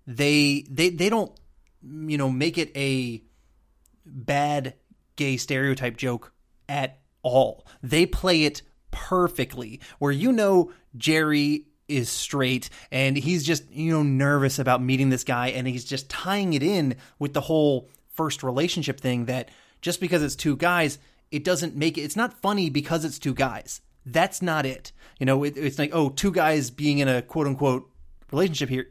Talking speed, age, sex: 170 wpm, 30-49, male